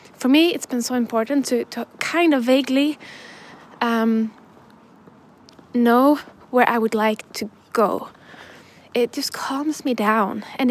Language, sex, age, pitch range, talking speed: English, female, 10-29, 220-260 Hz, 140 wpm